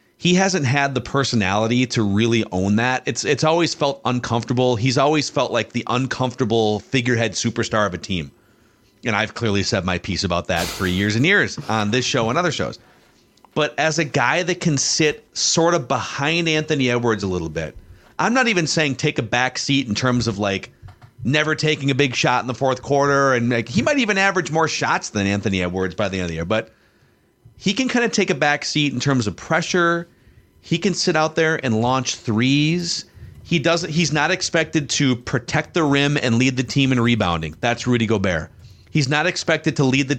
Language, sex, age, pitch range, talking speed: English, male, 40-59, 110-155 Hz, 210 wpm